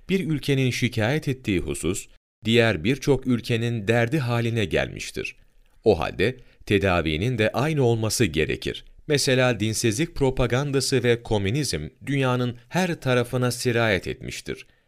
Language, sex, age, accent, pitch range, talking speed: Turkish, male, 40-59, native, 95-125 Hz, 115 wpm